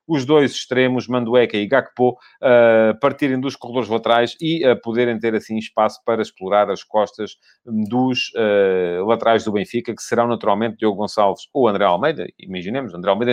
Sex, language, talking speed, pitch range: male, Portuguese, 165 wpm, 110-135 Hz